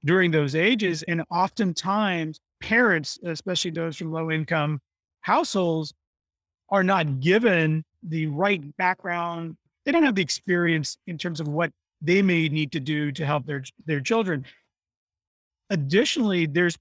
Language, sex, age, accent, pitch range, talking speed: English, male, 40-59, American, 155-185 Hz, 135 wpm